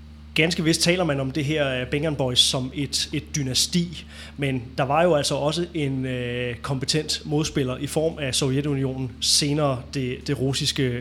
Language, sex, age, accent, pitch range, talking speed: Danish, male, 20-39, native, 125-150 Hz, 165 wpm